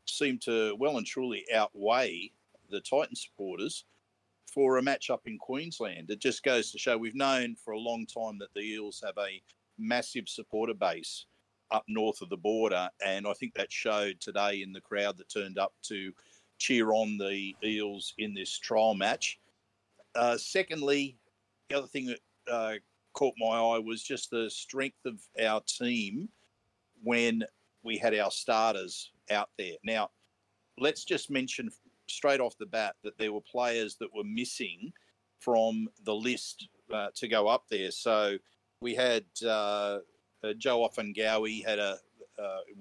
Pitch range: 100-115 Hz